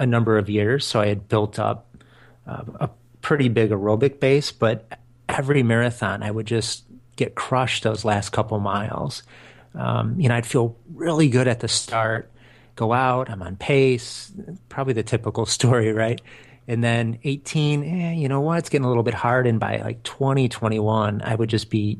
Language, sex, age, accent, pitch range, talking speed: English, male, 30-49, American, 110-135 Hz, 190 wpm